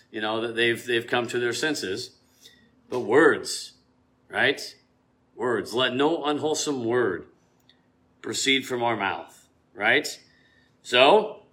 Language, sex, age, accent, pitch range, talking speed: English, male, 40-59, American, 125-165 Hz, 120 wpm